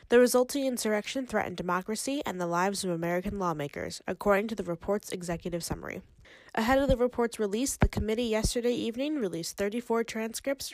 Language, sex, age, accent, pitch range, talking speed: English, female, 10-29, American, 190-245 Hz, 160 wpm